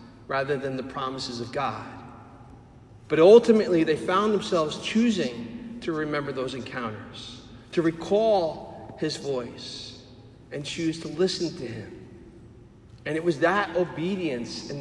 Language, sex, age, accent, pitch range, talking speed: English, male, 40-59, American, 130-185 Hz, 130 wpm